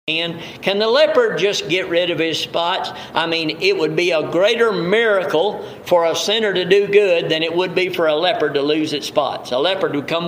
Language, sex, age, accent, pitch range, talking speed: English, male, 50-69, American, 145-185 Hz, 220 wpm